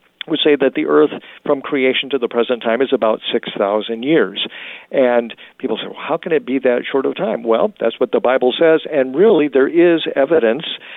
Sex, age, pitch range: male, 50-69, 115-140 Hz